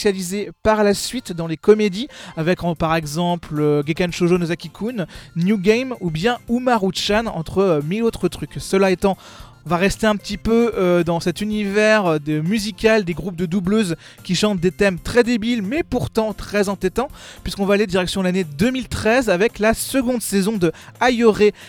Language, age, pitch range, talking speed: French, 20-39, 180-220 Hz, 170 wpm